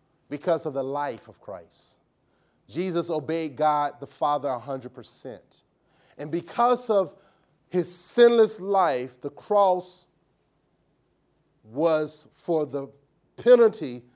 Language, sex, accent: English, male, American